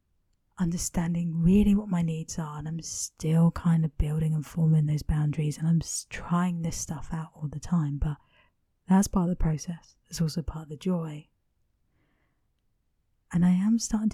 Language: English